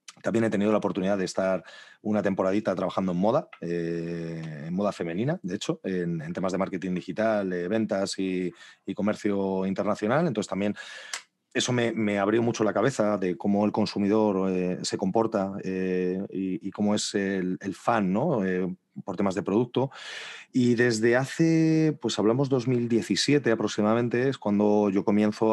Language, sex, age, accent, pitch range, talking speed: Spanish, male, 30-49, Spanish, 90-105 Hz, 165 wpm